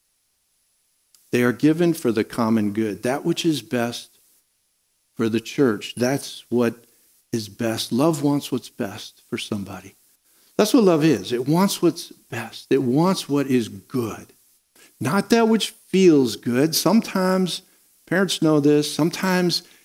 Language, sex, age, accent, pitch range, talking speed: English, male, 60-79, American, 110-150 Hz, 140 wpm